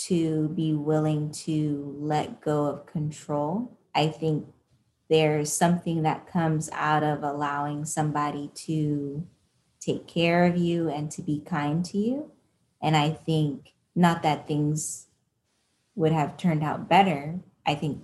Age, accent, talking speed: 20-39, American, 140 wpm